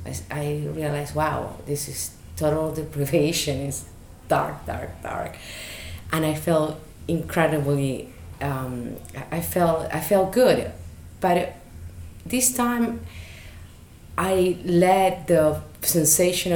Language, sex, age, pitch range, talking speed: English, female, 30-49, 135-170 Hz, 100 wpm